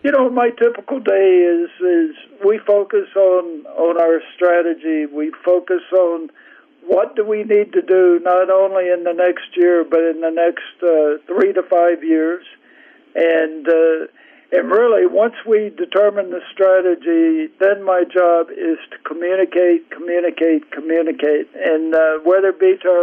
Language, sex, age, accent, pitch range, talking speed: English, male, 60-79, American, 170-215 Hz, 160 wpm